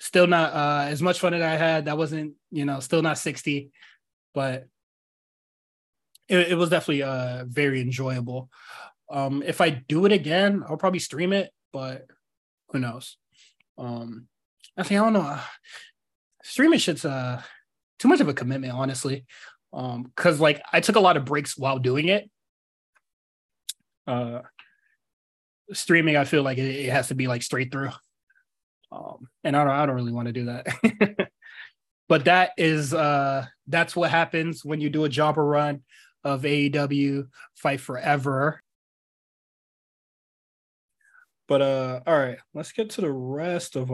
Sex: male